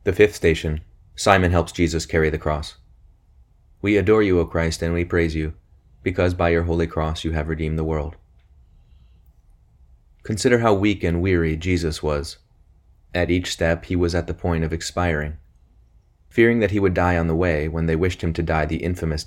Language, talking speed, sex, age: English, 190 wpm, male, 30-49